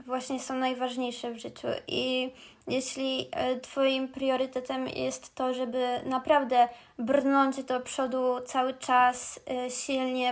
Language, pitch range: Polish, 250-275 Hz